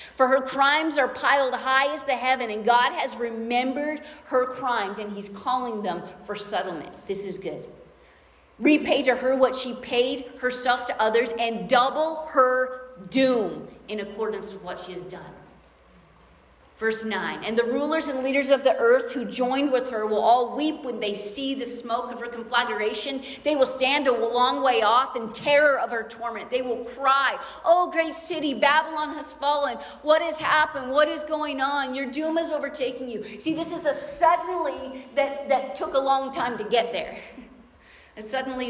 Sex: female